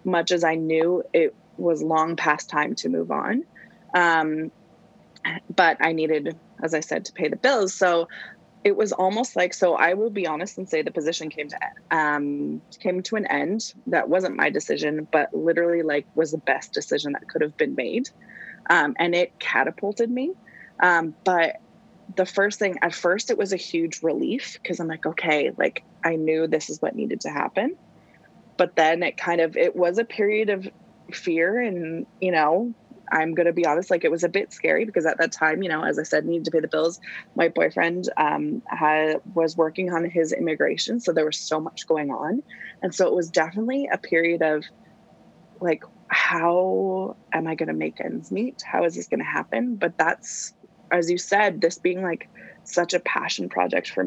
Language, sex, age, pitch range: English, female, 20-39, 160-200 Hz